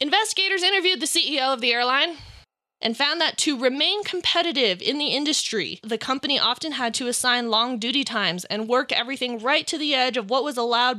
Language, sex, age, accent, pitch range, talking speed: English, female, 20-39, American, 215-270 Hz, 195 wpm